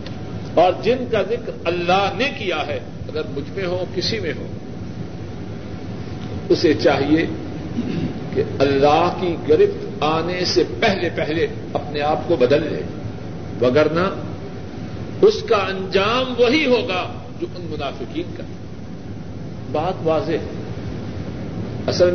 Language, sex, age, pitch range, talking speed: Urdu, male, 50-69, 140-195 Hz, 120 wpm